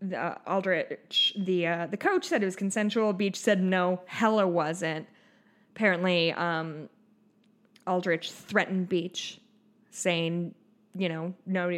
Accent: American